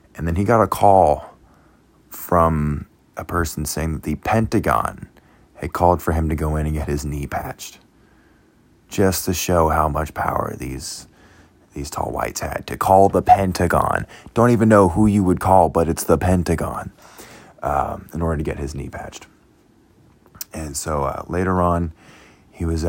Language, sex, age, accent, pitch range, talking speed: English, male, 20-39, American, 75-90 Hz, 175 wpm